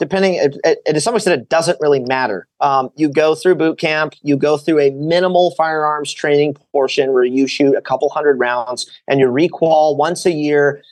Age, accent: 30-49, American